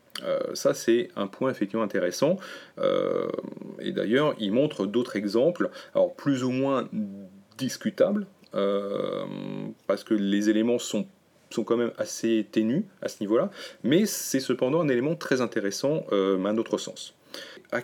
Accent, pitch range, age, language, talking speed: French, 105-150 Hz, 30-49, French, 155 wpm